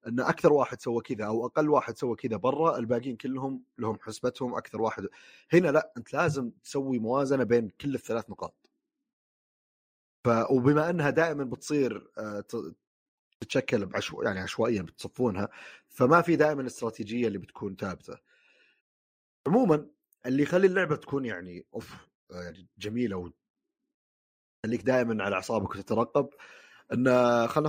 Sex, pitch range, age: male, 100-140 Hz, 30-49